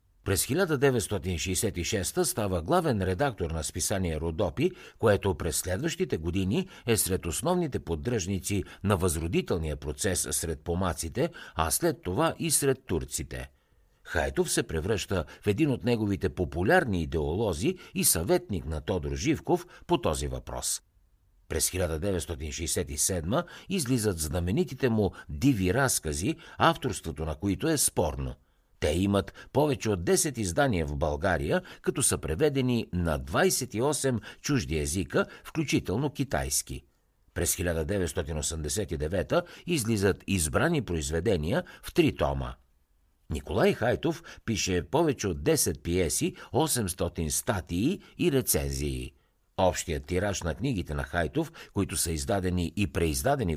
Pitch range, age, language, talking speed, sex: 80-115 Hz, 60-79, Bulgarian, 115 wpm, male